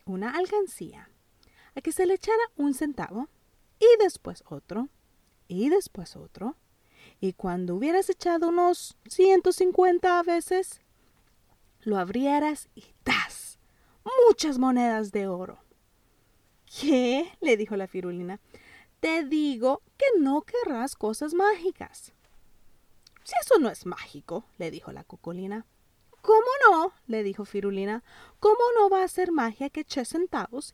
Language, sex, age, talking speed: English, female, 30-49, 130 wpm